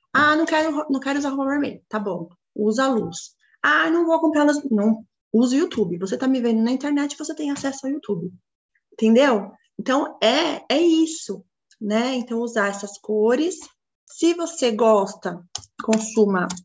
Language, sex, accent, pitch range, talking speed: Portuguese, female, Brazilian, 200-265 Hz, 175 wpm